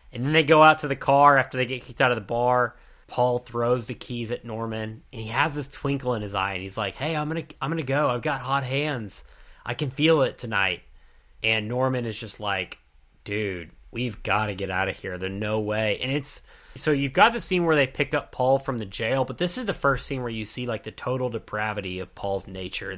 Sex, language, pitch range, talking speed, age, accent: male, English, 105-140 Hz, 255 wpm, 30-49, American